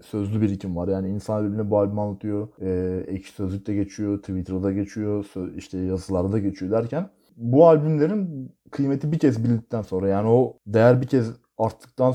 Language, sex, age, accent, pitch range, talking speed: Turkish, male, 30-49, native, 100-125 Hz, 175 wpm